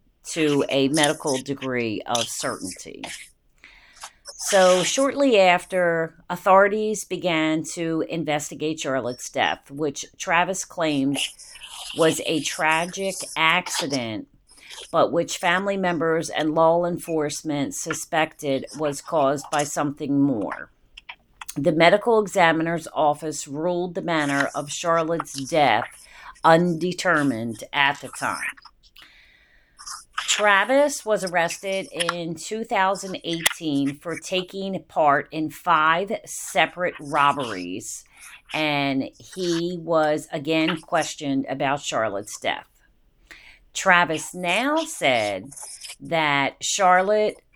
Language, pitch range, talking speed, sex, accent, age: English, 150-180 Hz, 95 wpm, female, American, 40-59